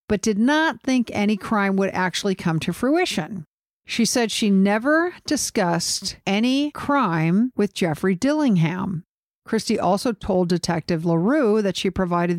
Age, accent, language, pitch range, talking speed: 50-69, American, English, 175-225 Hz, 140 wpm